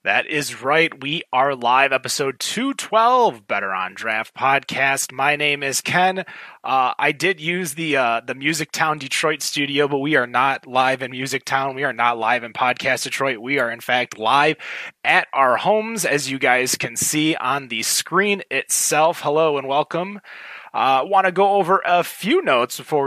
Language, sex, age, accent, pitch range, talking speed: English, male, 20-39, American, 130-175 Hz, 185 wpm